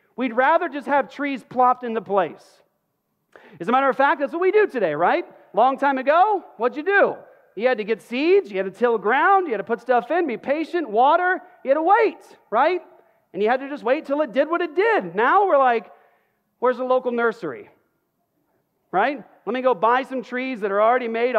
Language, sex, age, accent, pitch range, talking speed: English, male, 40-59, American, 210-280 Hz, 220 wpm